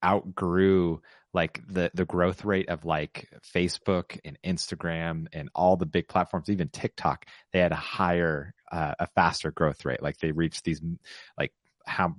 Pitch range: 85-100 Hz